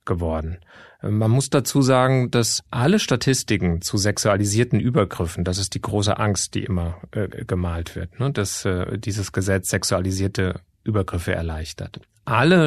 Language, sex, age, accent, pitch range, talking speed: German, male, 30-49, German, 95-120 Hz, 135 wpm